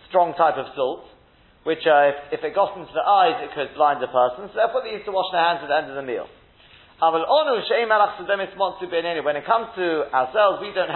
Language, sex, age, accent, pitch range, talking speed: English, male, 40-59, British, 155-200 Hz, 215 wpm